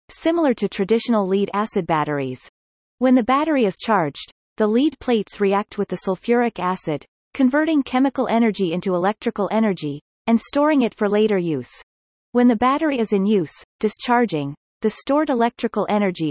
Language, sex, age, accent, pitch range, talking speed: English, female, 30-49, American, 185-240 Hz, 155 wpm